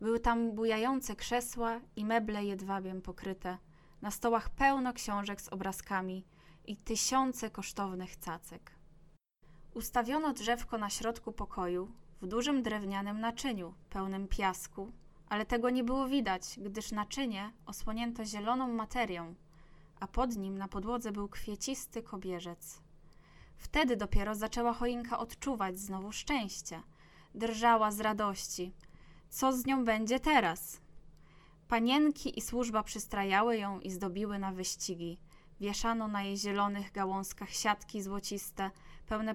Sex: female